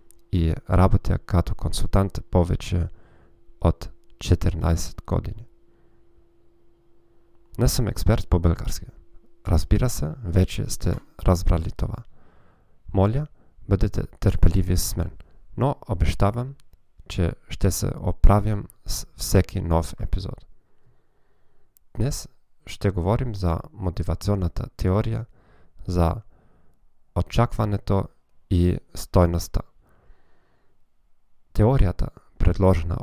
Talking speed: 80 wpm